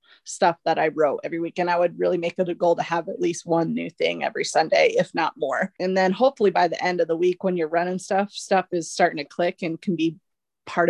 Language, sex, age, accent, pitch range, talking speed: English, female, 20-39, American, 170-200 Hz, 265 wpm